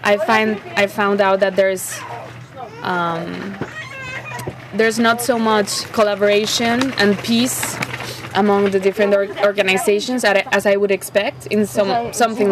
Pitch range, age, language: 180-215 Hz, 20-39, English